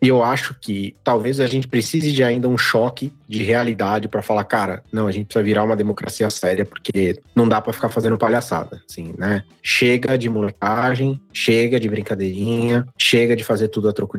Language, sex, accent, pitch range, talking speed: Portuguese, male, Brazilian, 115-160 Hz, 195 wpm